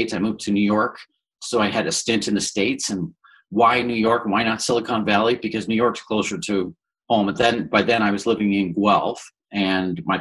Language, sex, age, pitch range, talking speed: English, male, 40-59, 95-110 Hz, 225 wpm